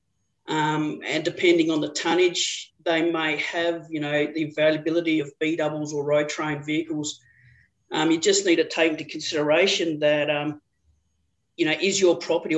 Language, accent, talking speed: English, Australian, 165 wpm